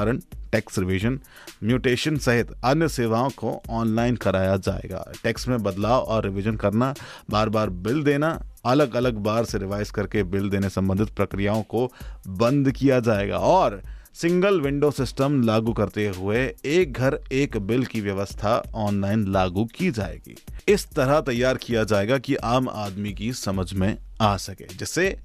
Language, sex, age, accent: Hindi, male, 30-49, native